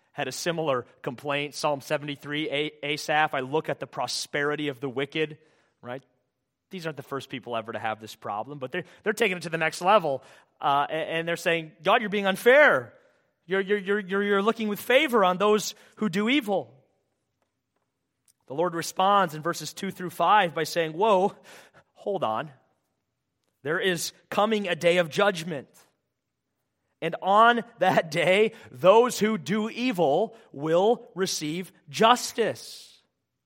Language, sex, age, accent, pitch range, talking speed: English, male, 30-49, American, 145-205 Hz, 155 wpm